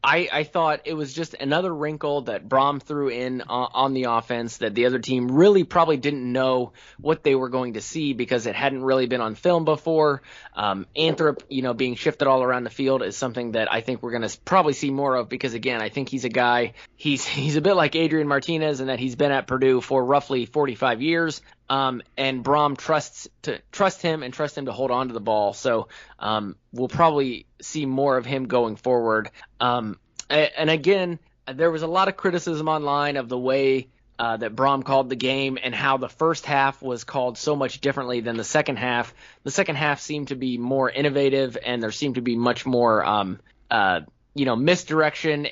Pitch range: 125-150 Hz